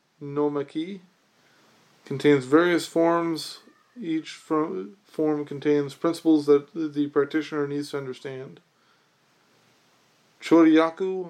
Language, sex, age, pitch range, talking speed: English, male, 20-39, 145-170 Hz, 85 wpm